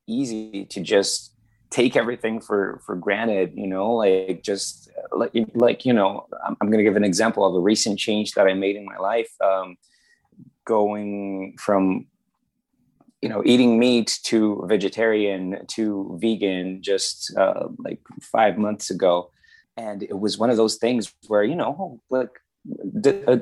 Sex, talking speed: male, 155 wpm